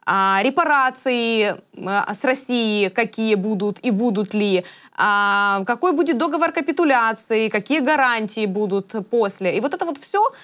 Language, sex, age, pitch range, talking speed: Ukrainian, female, 20-39, 205-270 Hz, 120 wpm